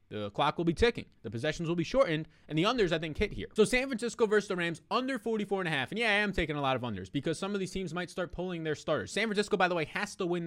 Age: 20-39